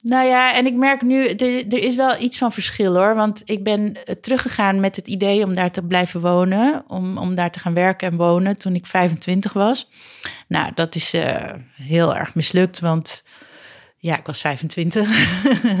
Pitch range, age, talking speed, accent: 180-230 Hz, 30-49, 185 wpm, Dutch